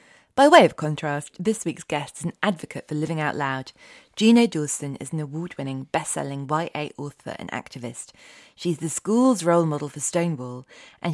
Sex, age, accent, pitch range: female, 20-39, British, 140-175 Hz